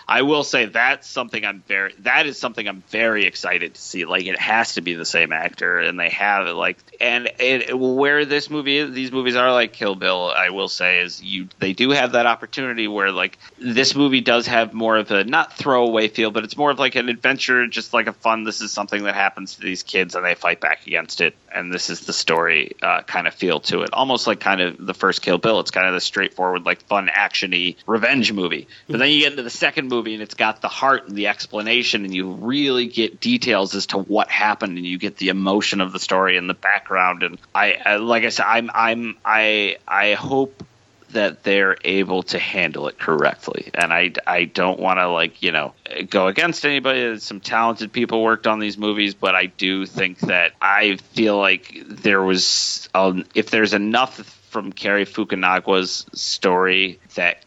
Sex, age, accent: male, 30-49, American